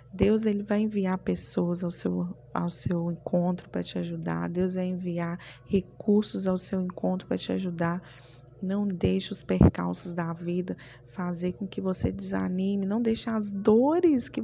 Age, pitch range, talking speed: 20-39, 125-190 Hz, 155 wpm